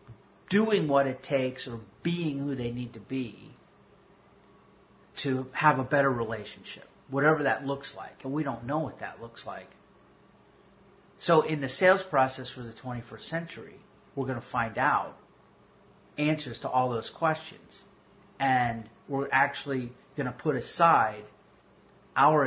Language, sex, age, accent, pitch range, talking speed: English, male, 40-59, American, 125-155 Hz, 145 wpm